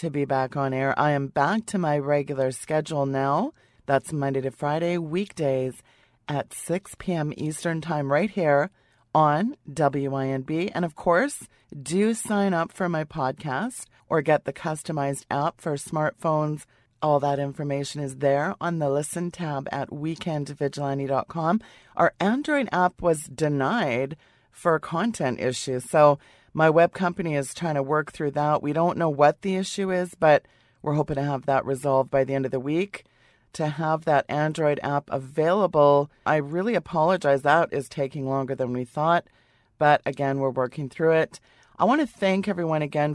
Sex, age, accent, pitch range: female, 30-49, American, 140-170 Hz